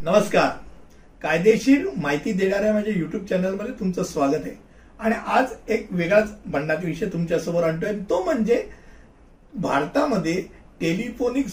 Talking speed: 75 wpm